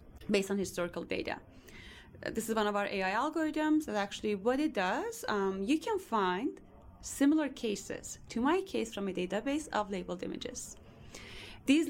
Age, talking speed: 30-49, 160 wpm